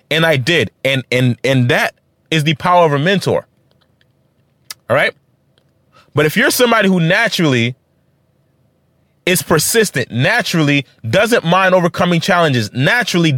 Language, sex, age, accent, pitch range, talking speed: English, male, 30-49, American, 135-195 Hz, 130 wpm